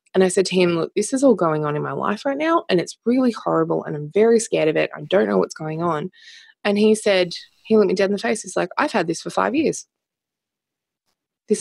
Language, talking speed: English, 265 wpm